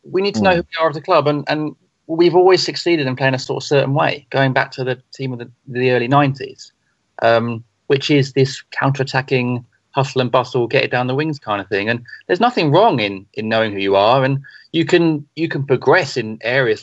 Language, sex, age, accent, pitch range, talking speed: English, male, 30-49, British, 130-160 Hz, 235 wpm